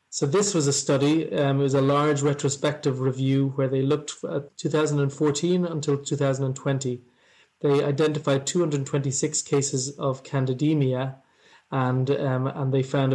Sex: male